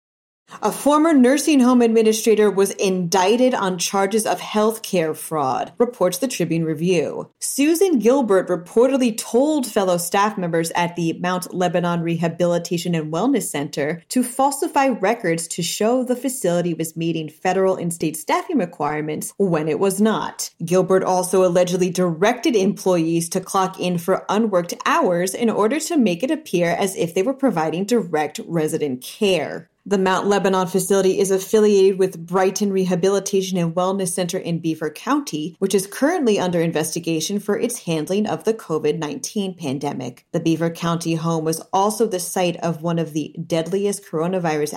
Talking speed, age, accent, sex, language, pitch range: 155 wpm, 30-49, American, female, English, 170-220 Hz